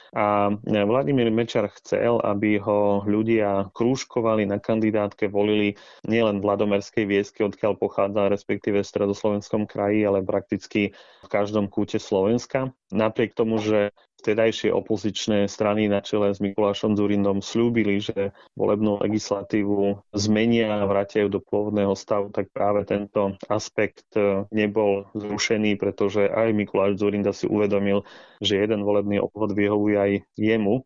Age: 30-49